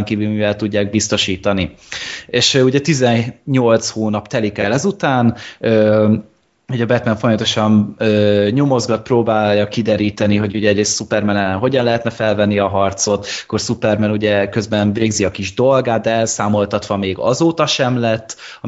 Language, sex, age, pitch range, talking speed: Hungarian, male, 20-39, 105-120 Hz, 140 wpm